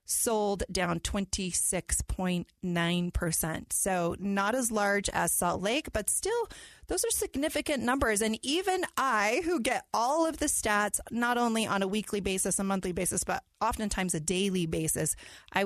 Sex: female